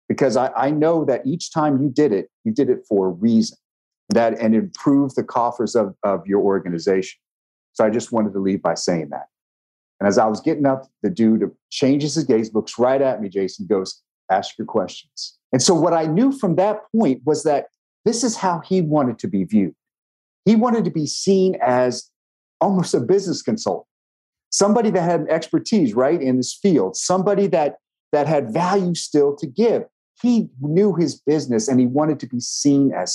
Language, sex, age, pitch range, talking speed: English, male, 40-59, 125-175 Hz, 195 wpm